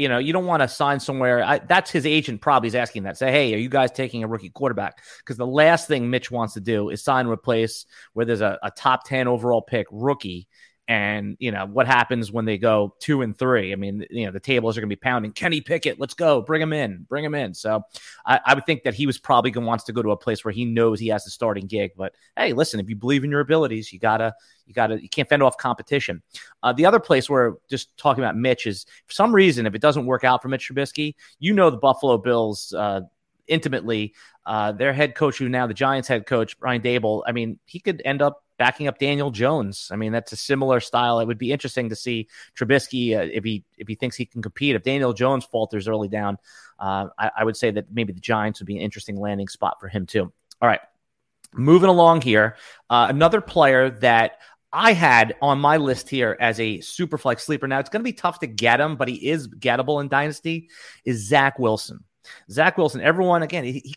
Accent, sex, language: American, male, English